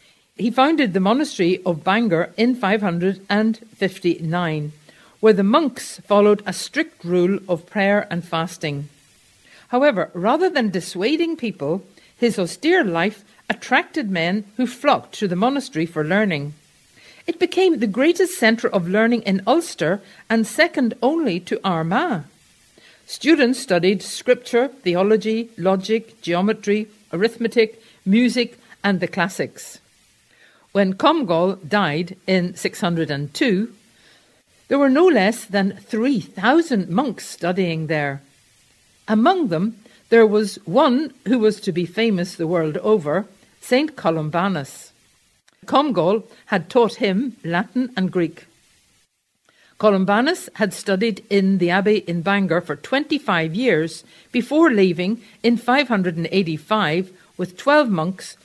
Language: English